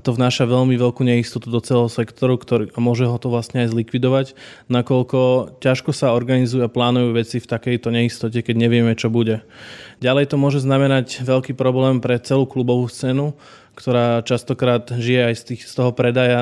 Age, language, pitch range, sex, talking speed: 20-39, Slovak, 120-135 Hz, male, 175 wpm